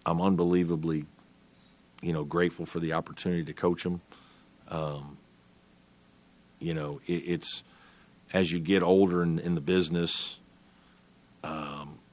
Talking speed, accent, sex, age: 120 wpm, American, male, 50-69